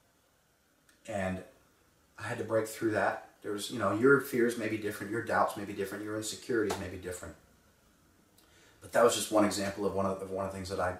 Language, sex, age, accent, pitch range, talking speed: English, male, 30-49, American, 90-105 Hz, 225 wpm